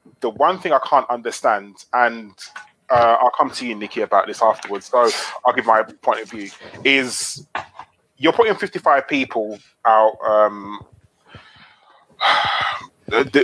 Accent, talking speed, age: British, 140 wpm, 20-39